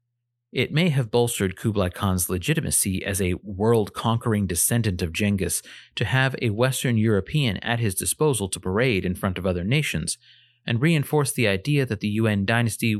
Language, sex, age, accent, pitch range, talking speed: English, male, 30-49, American, 100-125 Hz, 165 wpm